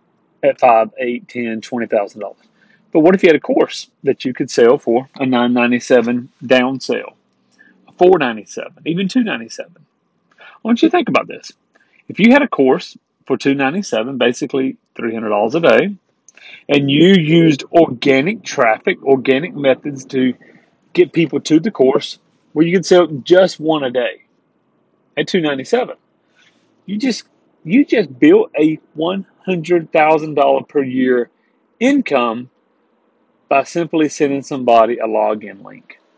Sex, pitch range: male, 130-180 Hz